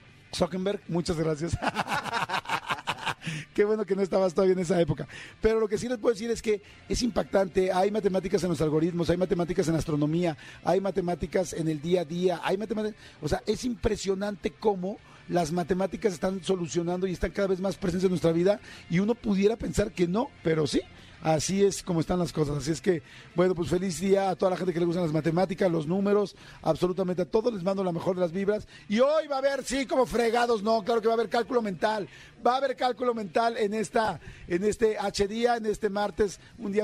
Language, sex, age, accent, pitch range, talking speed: Spanish, male, 50-69, Mexican, 175-215 Hz, 215 wpm